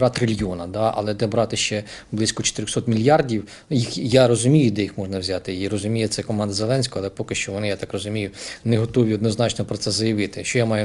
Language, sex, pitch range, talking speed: Russian, male, 105-130 Hz, 210 wpm